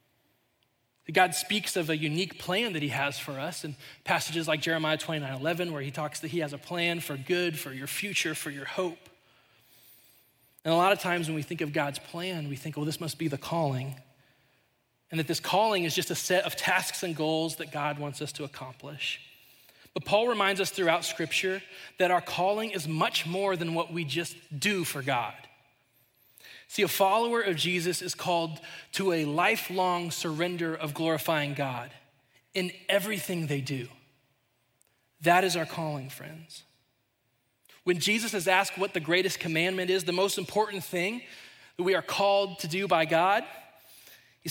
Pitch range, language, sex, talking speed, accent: 145-185 Hz, English, male, 185 wpm, American